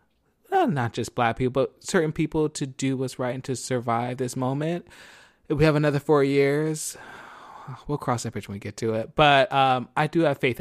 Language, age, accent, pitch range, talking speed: English, 20-39, American, 115-135 Hz, 210 wpm